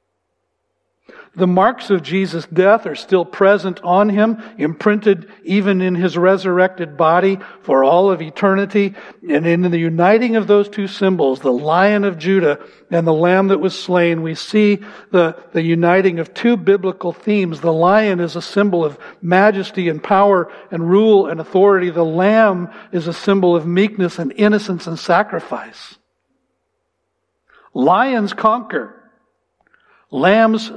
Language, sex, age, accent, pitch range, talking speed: English, male, 60-79, American, 170-205 Hz, 145 wpm